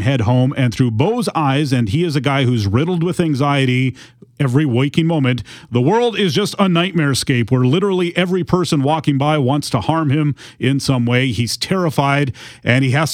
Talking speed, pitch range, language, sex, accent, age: 195 wpm, 125-155 Hz, English, male, American, 30-49